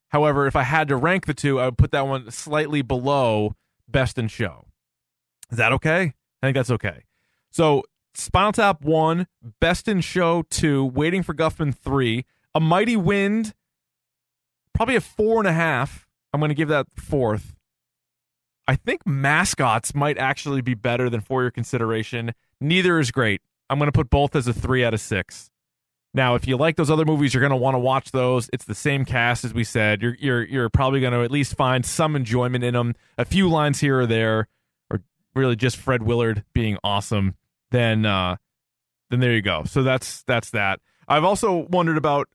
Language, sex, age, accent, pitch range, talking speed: English, male, 20-39, American, 115-150 Hz, 195 wpm